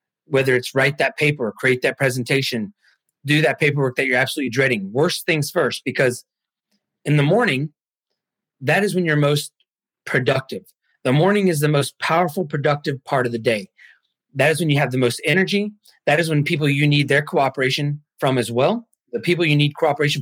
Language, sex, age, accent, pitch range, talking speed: English, male, 30-49, American, 130-165 Hz, 185 wpm